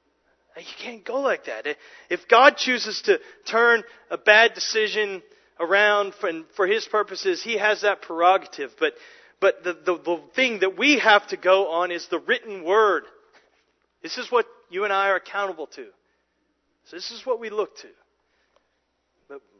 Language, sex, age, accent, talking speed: English, male, 40-59, American, 165 wpm